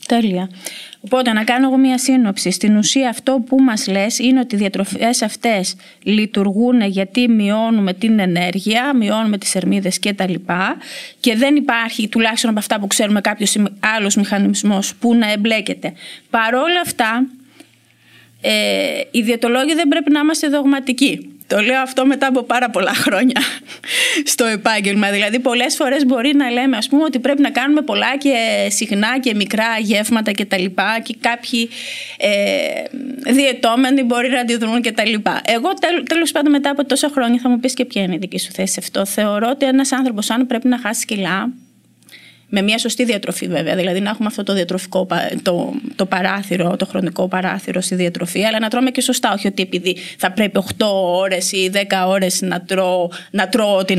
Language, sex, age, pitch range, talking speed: Greek, female, 20-39, 195-260 Hz, 175 wpm